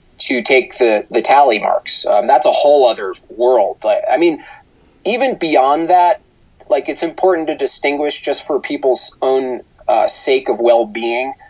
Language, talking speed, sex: English, 160 wpm, male